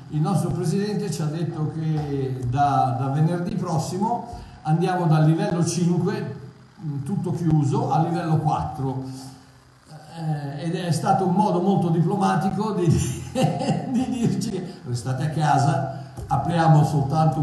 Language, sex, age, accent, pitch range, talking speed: Italian, male, 50-69, native, 135-170 Hz, 125 wpm